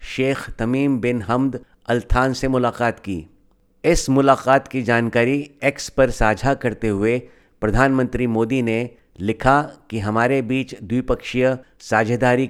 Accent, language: native, Hindi